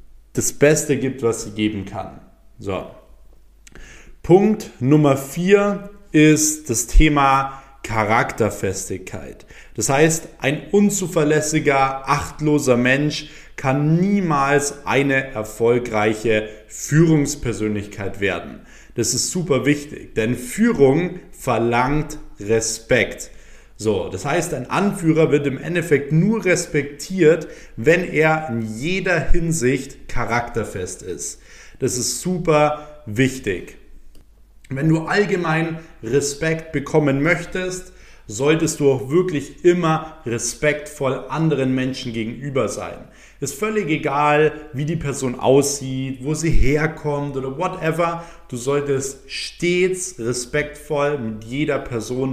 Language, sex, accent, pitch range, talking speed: German, male, German, 125-160 Hz, 105 wpm